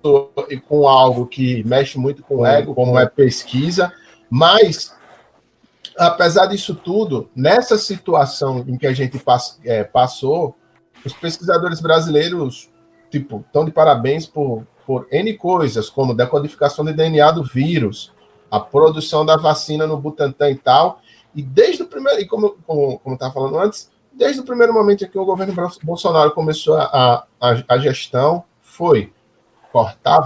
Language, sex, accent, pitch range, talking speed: Portuguese, male, Brazilian, 130-170 Hz, 155 wpm